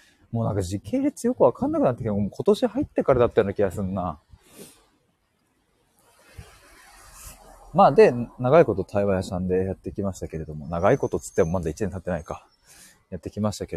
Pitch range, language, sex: 95-150 Hz, Japanese, male